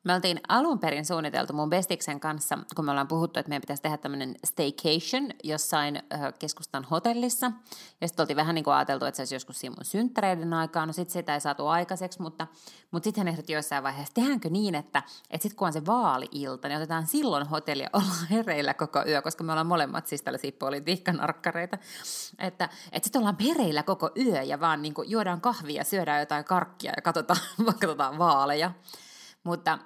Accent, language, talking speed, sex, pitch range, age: native, Finnish, 185 wpm, female, 145-180 Hz, 20-39